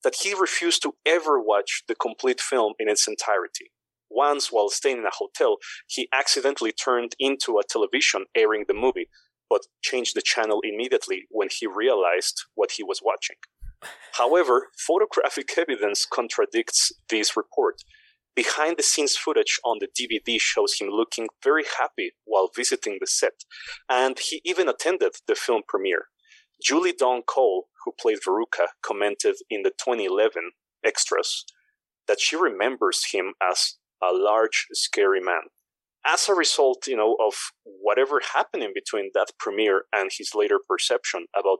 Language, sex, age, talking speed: English, male, 30-49, 145 wpm